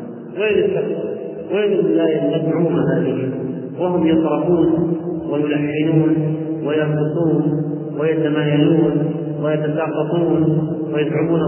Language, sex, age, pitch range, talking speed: Arabic, male, 40-59, 150-175 Hz, 70 wpm